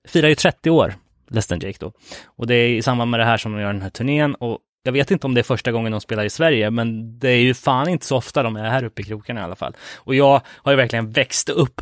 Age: 20-39